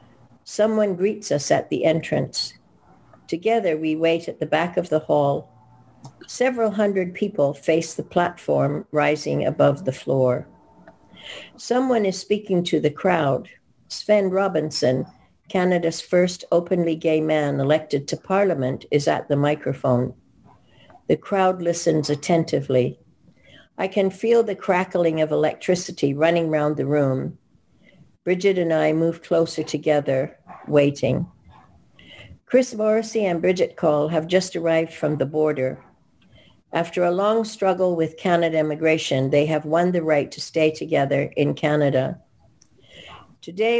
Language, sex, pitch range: English, female, 145-185 Hz